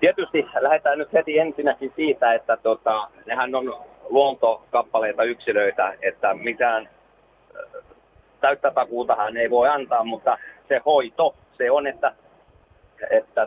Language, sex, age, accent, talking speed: Finnish, male, 30-49, native, 115 wpm